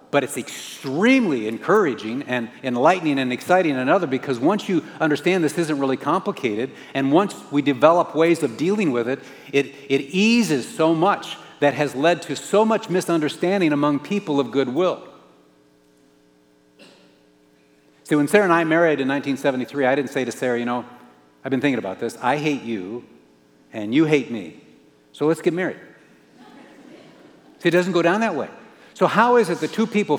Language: English